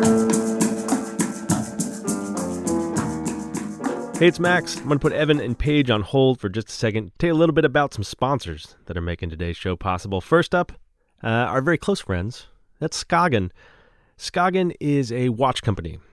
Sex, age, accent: male, 30-49, American